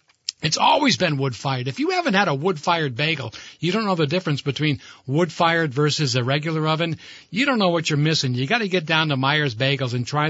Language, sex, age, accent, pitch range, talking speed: English, male, 60-79, American, 150-195 Hz, 220 wpm